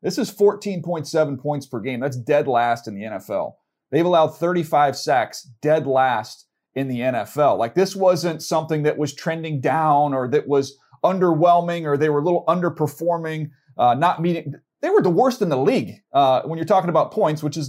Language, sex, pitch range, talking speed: English, male, 130-165 Hz, 195 wpm